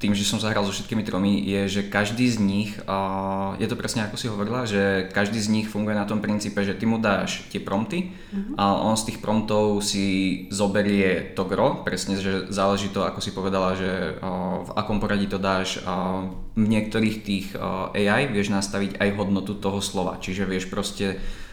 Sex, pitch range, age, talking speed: male, 95-105 Hz, 20-39, 185 wpm